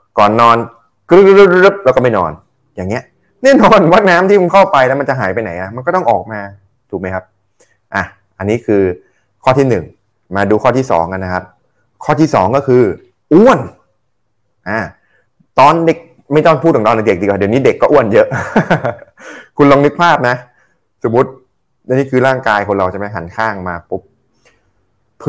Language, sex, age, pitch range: Thai, male, 20-39, 105-145 Hz